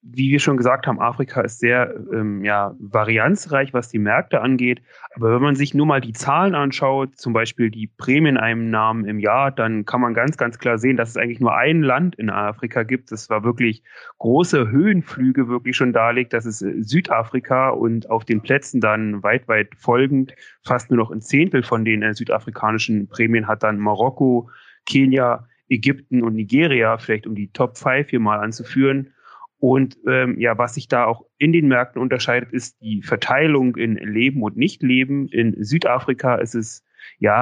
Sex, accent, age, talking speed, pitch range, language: male, German, 30-49, 180 wpm, 110-135 Hz, German